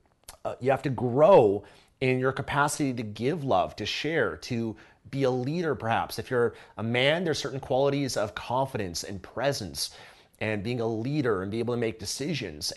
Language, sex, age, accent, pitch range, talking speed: English, male, 30-49, American, 115-145 Hz, 185 wpm